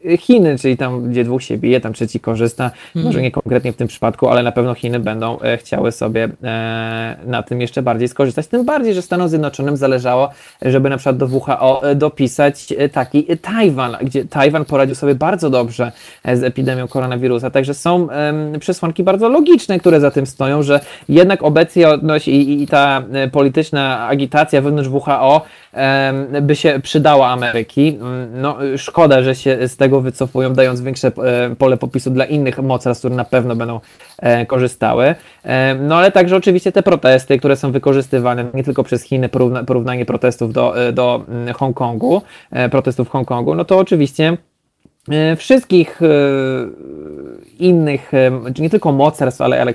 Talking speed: 150 wpm